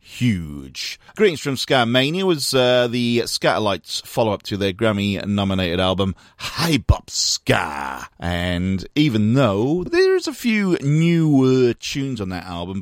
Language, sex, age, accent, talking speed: English, male, 40-59, British, 140 wpm